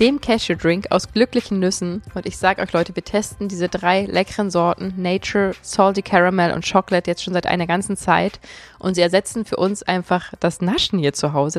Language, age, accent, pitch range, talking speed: German, 20-39, German, 175-210 Hz, 195 wpm